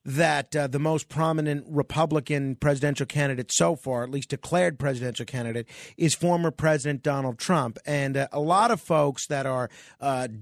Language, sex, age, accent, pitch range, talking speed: English, male, 40-59, American, 145-195 Hz, 165 wpm